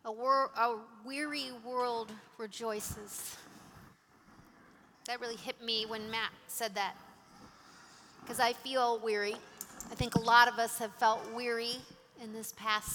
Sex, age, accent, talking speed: female, 40-59, American, 135 wpm